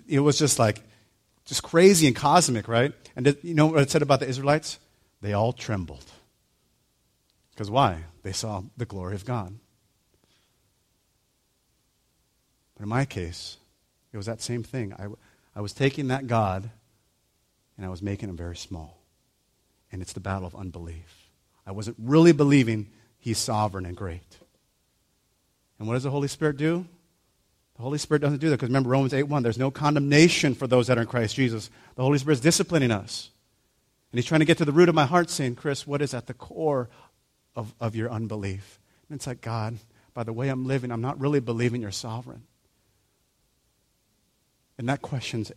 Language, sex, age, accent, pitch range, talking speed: English, male, 40-59, American, 105-140 Hz, 180 wpm